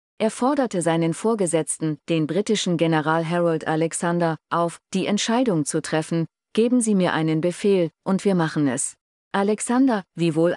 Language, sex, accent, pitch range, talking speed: German, female, German, 160-195 Hz, 150 wpm